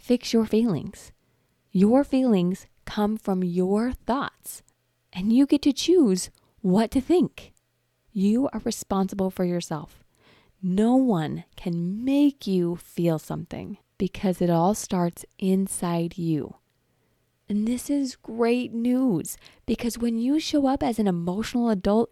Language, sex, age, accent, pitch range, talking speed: English, female, 20-39, American, 180-230 Hz, 135 wpm